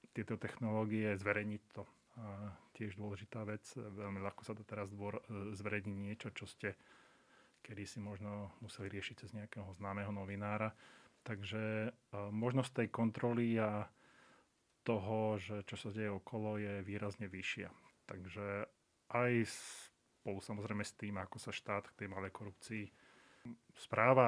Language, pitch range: Slovak, 100-110 Hz